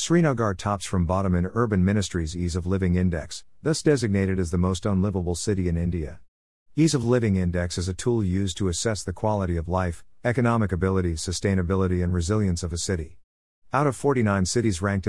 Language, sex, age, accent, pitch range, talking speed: English, male, 50-69, American, 90-110 Hz, 185 wpm